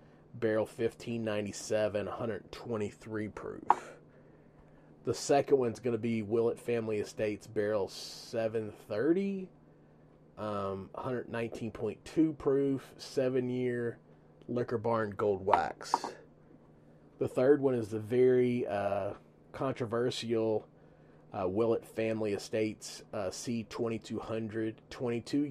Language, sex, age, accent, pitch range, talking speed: English, male, 30-49, American, 105-120 Hz, 90 wpm